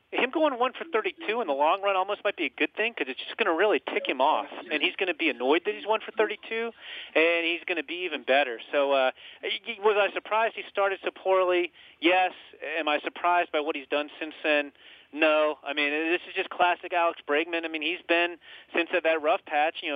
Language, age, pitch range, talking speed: English, 40-59, 145-175 Hz, 240 wpm